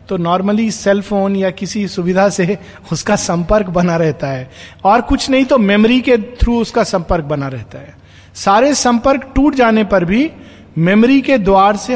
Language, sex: Hindi, male